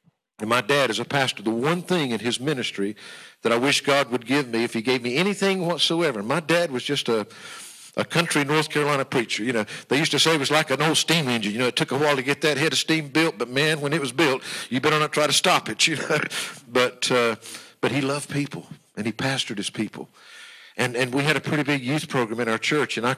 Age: 50-69